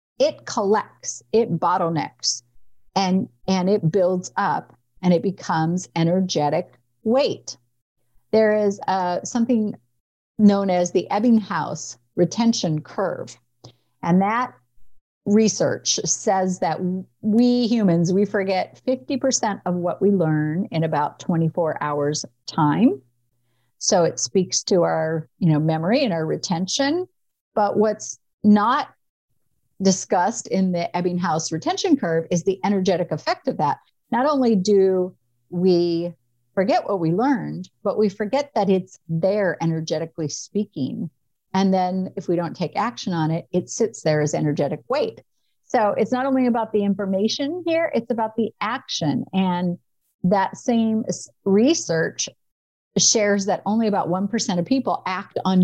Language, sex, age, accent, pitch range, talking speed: English, female, 50-69, American, 160-215 Hz, 135 wpm